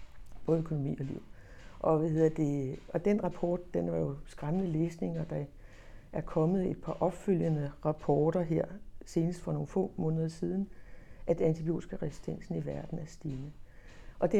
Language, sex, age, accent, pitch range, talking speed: Danish, female, 60-79, native, 140-175 Hz, 165 wpm